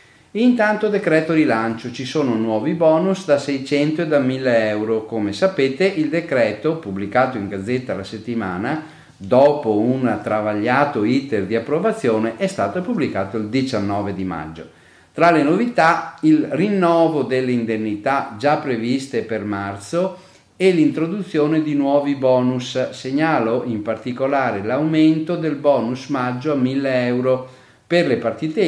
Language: Italian